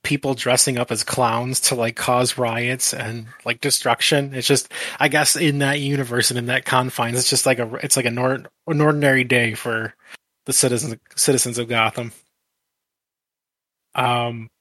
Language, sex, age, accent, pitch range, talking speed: English, male, 20-39, American, 125-145 Hz, 170 wpm